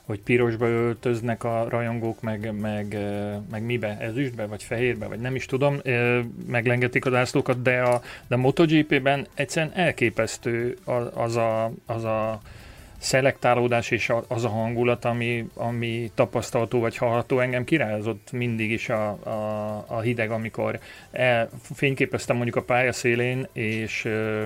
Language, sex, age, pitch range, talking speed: Hungarian, male, 30-49, 115-130 Hz, 135 wpm